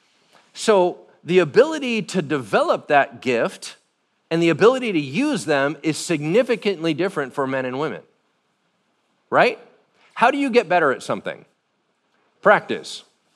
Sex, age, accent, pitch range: male, 40-59, American, 135-205 Hz